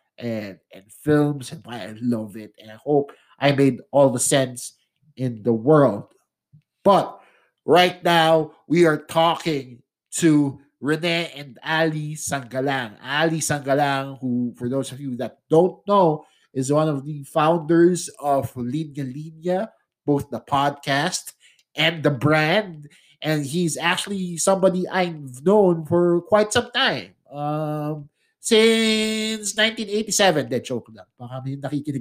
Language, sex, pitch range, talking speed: English, male, 135-165 Hz, 125 wpm